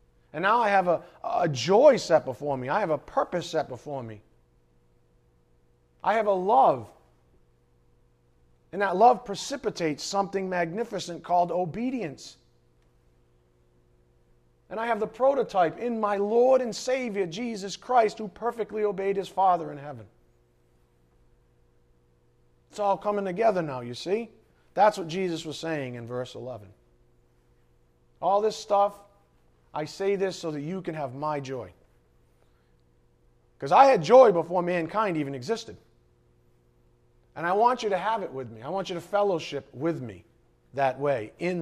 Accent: American